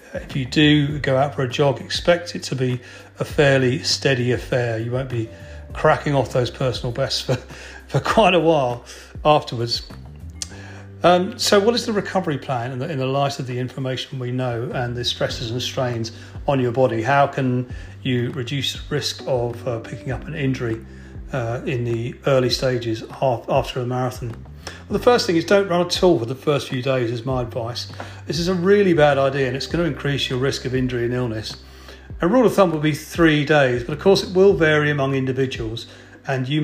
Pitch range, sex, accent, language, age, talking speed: 120-145 Hz, male, British, English, 40-59, 200 wpm